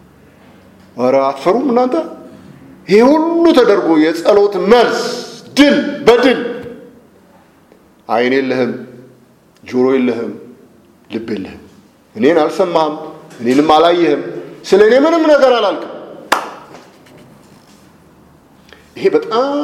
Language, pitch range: English, 155-260 Hz